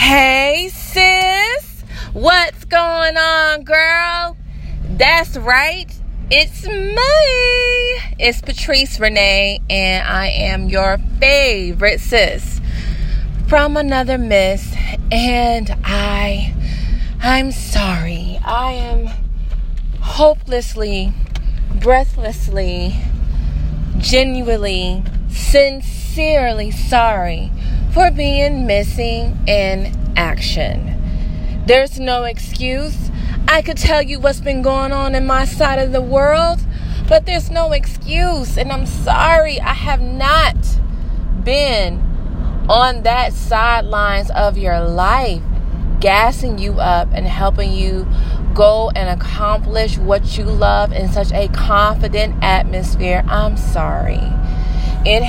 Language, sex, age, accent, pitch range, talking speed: English, female, 20-39, American, 190-290 Hz, 100 wpm